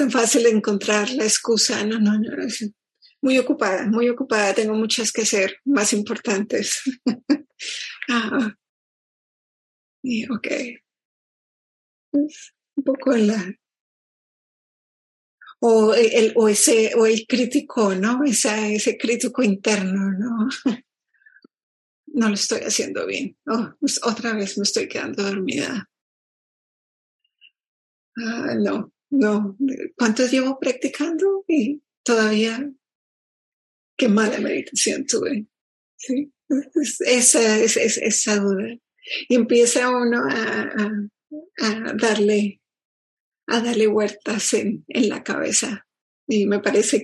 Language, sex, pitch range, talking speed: English, female, 215-265 Hz, 110 wpm